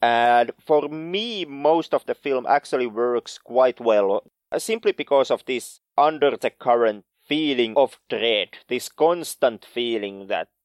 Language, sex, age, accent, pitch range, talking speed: English, male, 30-49, Finnish, 120-170 Hz, 140 wpm